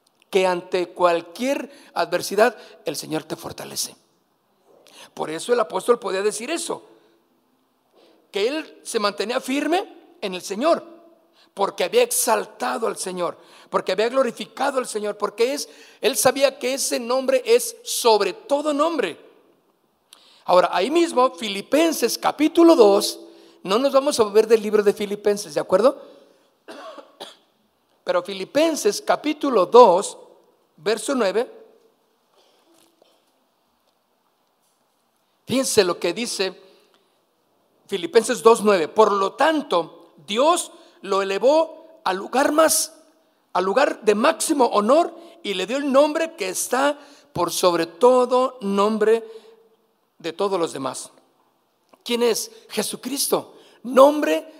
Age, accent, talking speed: 50-69, Mexican, 115 wpm